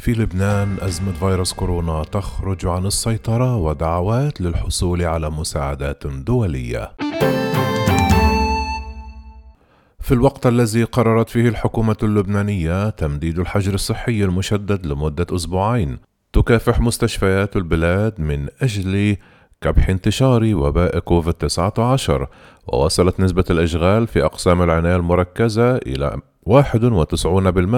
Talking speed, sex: 95 wpm, male